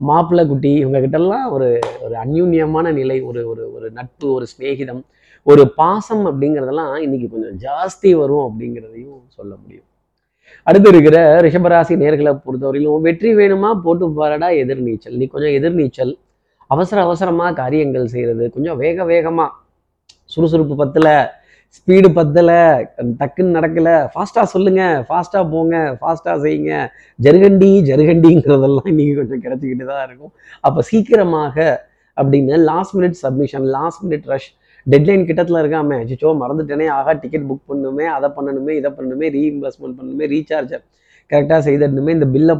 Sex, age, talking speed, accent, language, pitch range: male, 30-49, 125 wpm, native, Tamil, 135-170 Hz